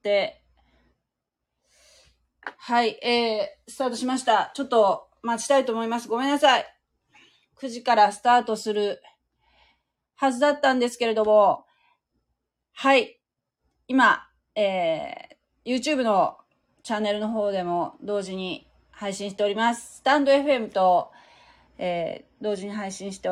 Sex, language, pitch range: female, Japanese, 195-265 Hz